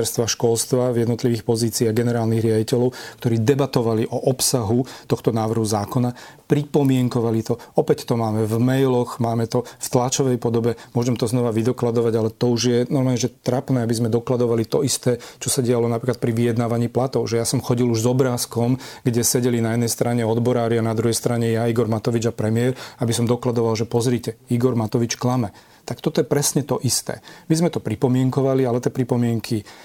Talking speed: 185 wpm